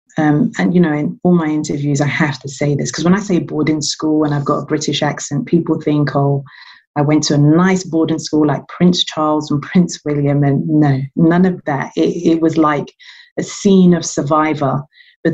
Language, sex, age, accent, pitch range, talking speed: English, female, 30-49, British, 150-175 Hz, 215 wpm